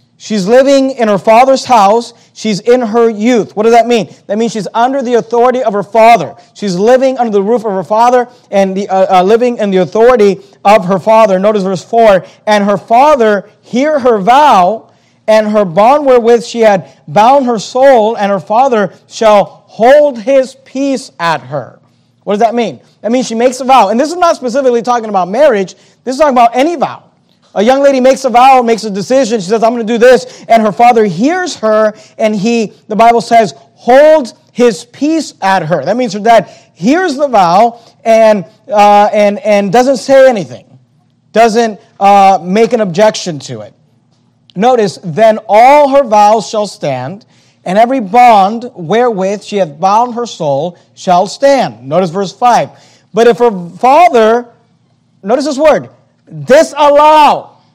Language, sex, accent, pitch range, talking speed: English, male, American, 200-250 Hz, 180 wpm